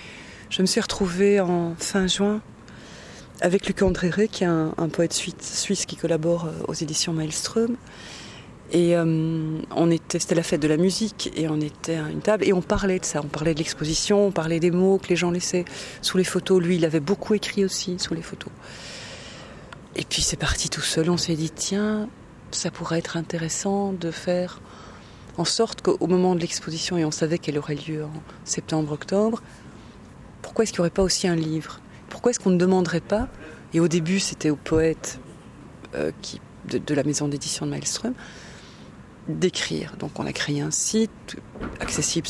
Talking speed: 190 wpm